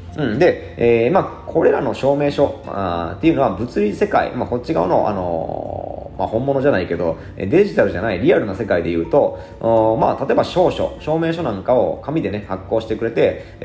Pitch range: 85-110 Hz